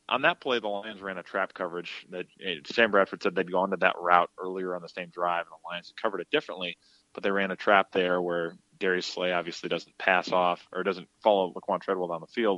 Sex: male